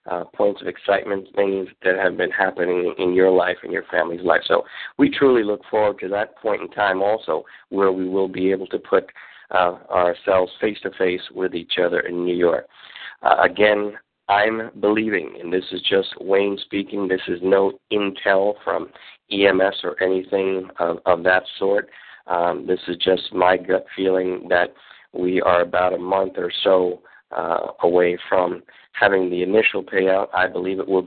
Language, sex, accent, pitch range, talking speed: English, male, American, 90-100 Hz, 175 wpm